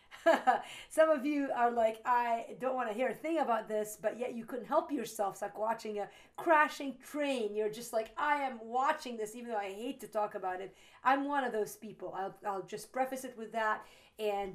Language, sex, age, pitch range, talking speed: English, female, 40-59, 200-255 Hz, 225 wpm